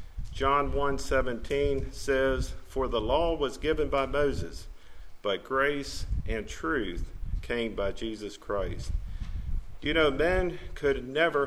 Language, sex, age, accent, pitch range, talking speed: English, male, 50-69, American, 95-140 Hz, 125 wpm